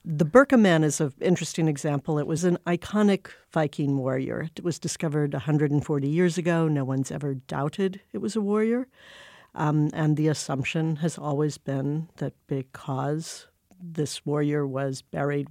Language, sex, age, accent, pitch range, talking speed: English, female, 60-79, American, 140-165 Hz, 155 wpm